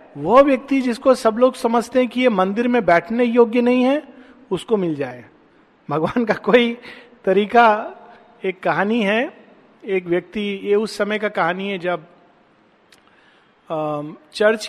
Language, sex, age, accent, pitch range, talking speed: Hindi, male, 50-69, native, 185-230 Hz, 145 wpm